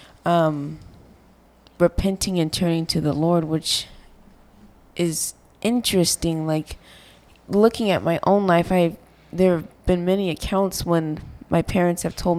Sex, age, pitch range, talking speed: female, 20-39, 155-180 Hz, 130 wpm